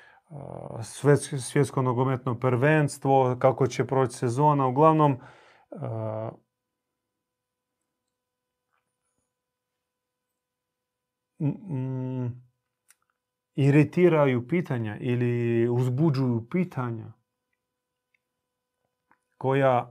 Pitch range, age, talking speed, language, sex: 120-150 Hz, 30-49, 55 wpm, Croatian, male